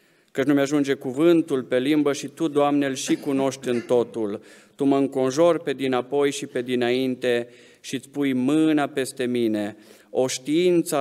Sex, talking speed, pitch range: male, 165 wpm, 120-145 Hz